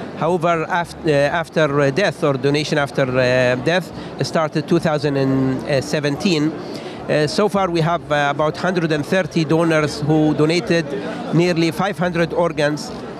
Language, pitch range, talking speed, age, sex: English, 145-175 Hz, 120 wpm, 60-79, male